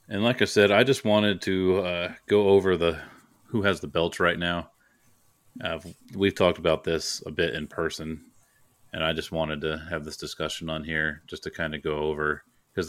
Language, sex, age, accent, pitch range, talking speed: English, male, 30-49, American, 80-85 Hz, 205 wpm